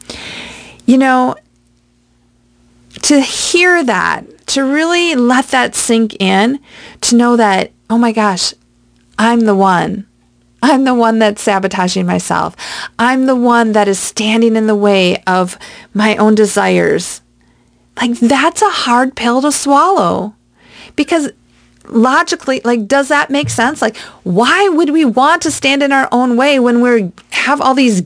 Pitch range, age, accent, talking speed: 195-275 Hz, 40-59, American, 150 wpm